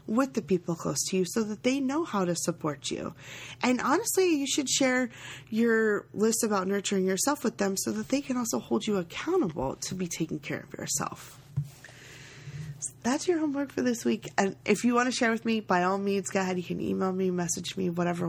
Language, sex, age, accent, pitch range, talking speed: English, female, 20-39, American, 165-215 Hz, 215 wpm